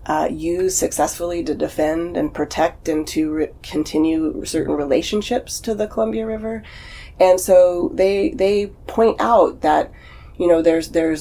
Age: 30-49